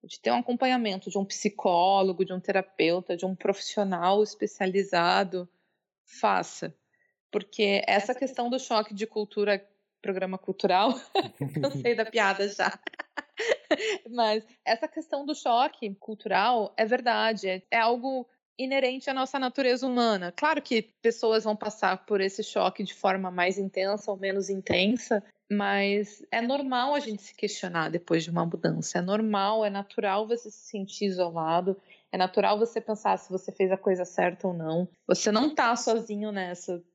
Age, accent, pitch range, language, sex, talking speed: 20-39, Brazilian, 195-230 Hz, Portuguese, female, 155 wpm